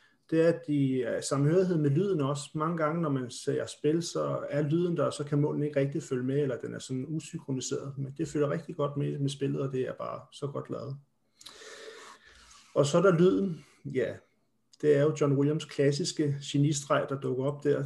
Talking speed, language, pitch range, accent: 210 wpm, Danish, 140-160 Hz, native